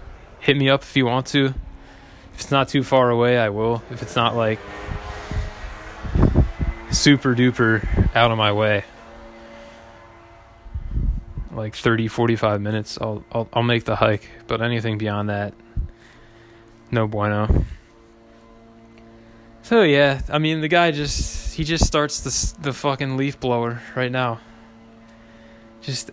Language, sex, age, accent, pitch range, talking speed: English, male, 20-39, American, 115-135 Hz, 135 wpm